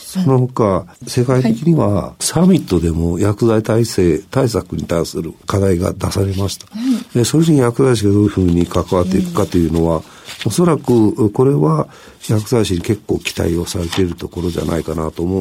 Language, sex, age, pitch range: Japanese, male, 50-69, 85-125 Hz